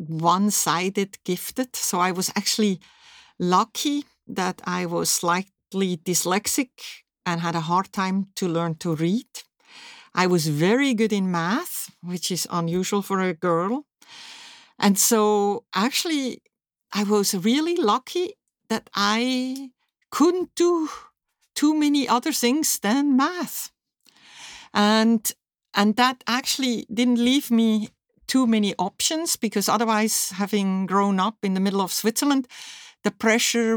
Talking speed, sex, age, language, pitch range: 130 wpm, female, 60-79, Slovak, 180-250 Hz